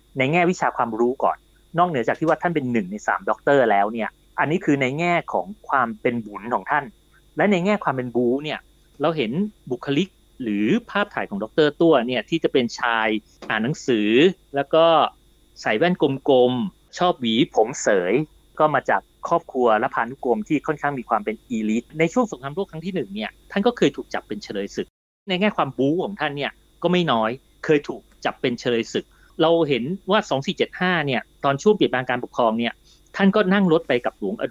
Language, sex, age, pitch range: Thai, male, 30-49, 125-175 Hz